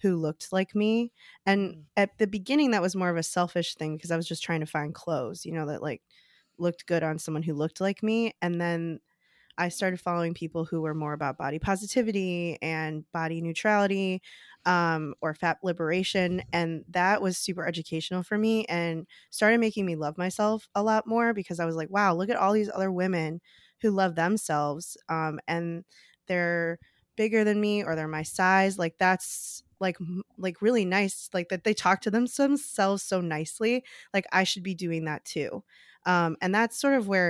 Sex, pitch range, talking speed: female, 165-200 Hz, 195 wpm